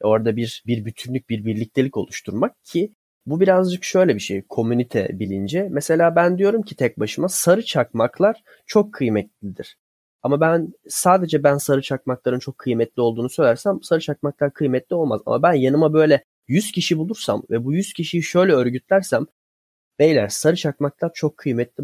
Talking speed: 155 wpm